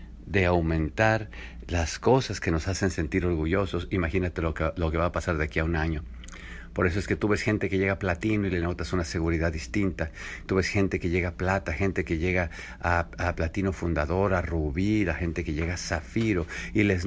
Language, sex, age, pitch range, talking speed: English, male, 50-69, 85-95 Hz, 220 wpm